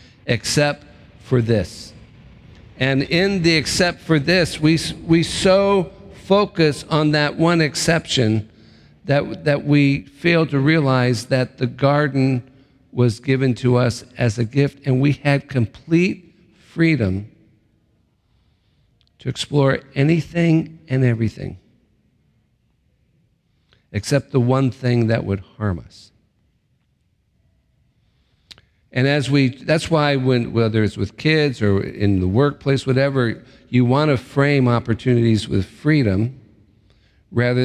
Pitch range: 110-145 Hz